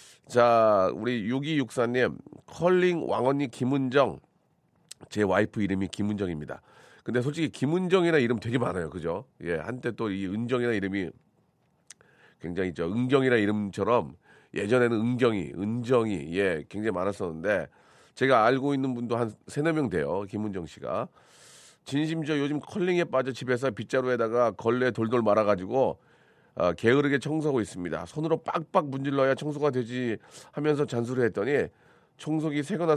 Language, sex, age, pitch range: Korean, male, 40-59, 105-145 Hz